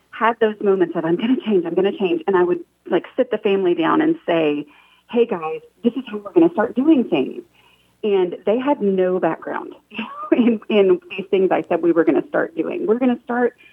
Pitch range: 185-265 Hz